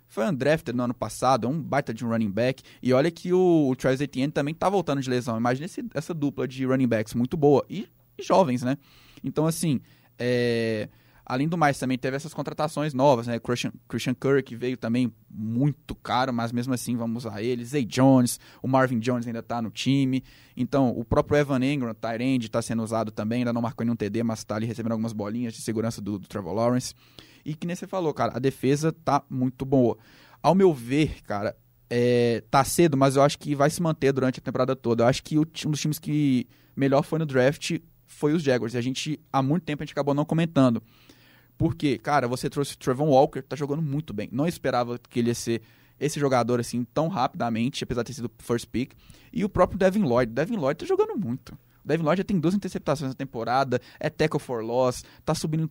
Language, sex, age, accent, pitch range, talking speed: Portuguese, male, 20-39, Brazilian, 120-145 Hz, 220 wpm